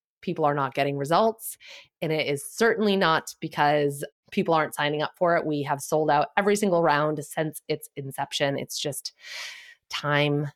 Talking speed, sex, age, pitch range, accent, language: 170 wpm, female, 30-49, 145-185 Hz, American, English